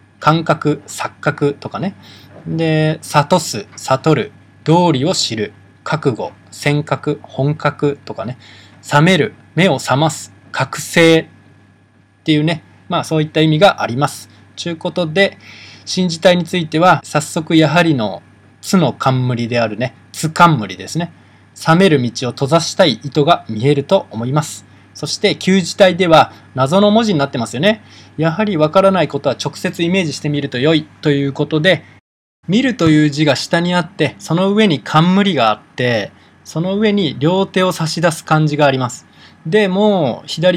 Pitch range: 125-180 Hz